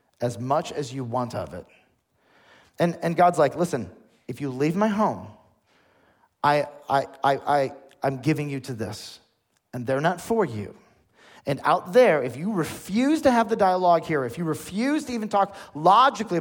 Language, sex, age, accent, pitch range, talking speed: English, male, 40-59, American, 135-205 Hz, 180 wpm